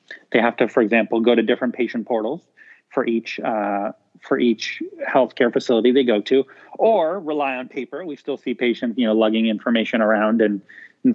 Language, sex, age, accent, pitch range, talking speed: English, male, 40-59, American, 125-165 Hz, 190 wpm